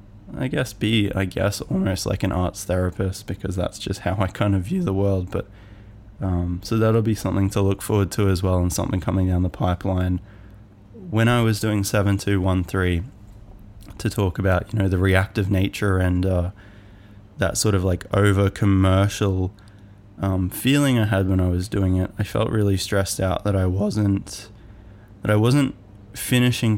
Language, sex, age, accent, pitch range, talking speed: English, male, 20-39, Australian, 95-105 Hz, 180 wpm